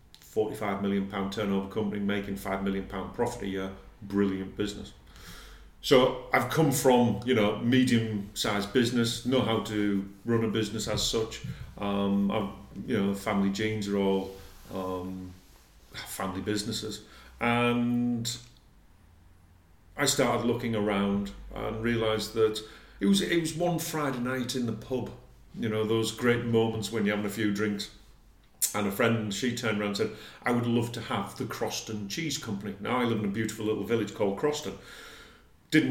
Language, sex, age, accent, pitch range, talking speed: English, male, 40-59, British, 100-120 Hz, 165 wpm